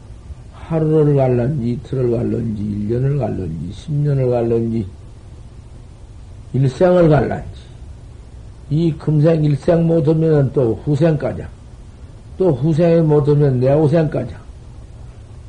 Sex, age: male, 50-69